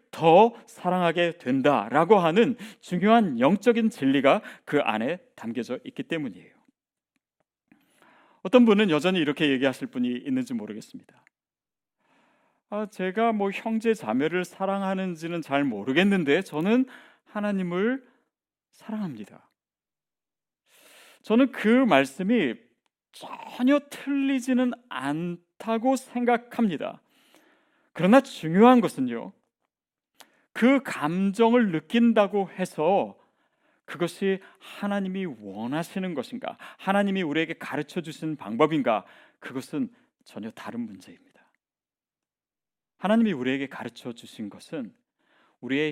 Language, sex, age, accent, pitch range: Korean, male, 40-59, native, 160-245 Hz